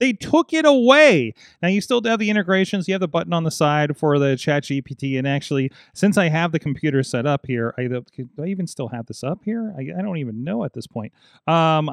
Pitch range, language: 135-180 Hz, English